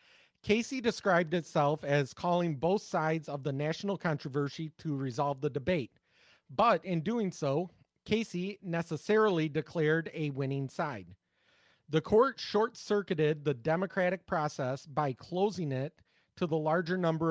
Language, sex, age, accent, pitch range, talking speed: English, male, 30-49, American, 145-180 Hz, 130 wpm